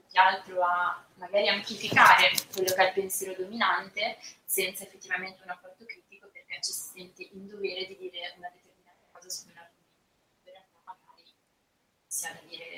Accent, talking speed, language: native, 165 wpm, Italian